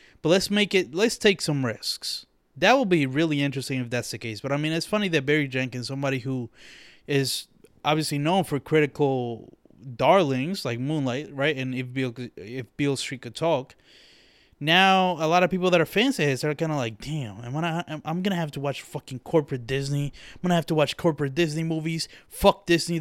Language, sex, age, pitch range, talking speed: English, male, 20-39, 130-165 Hz, 205 wpm